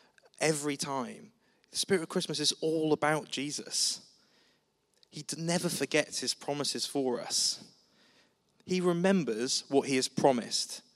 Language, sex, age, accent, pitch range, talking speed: English, male, 20-39, British, 120-165 Hz, 125 wpm